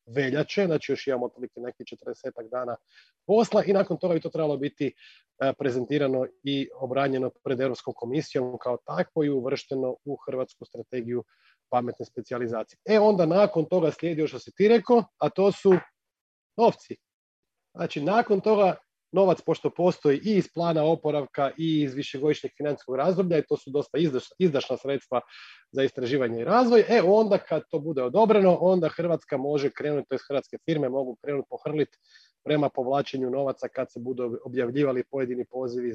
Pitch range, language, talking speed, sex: 130-195 Hz, Croatian, 160 wpm, male